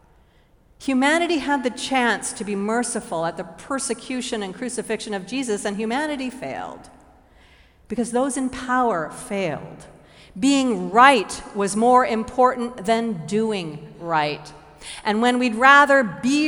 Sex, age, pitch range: female, 50-69, 185-250 Hz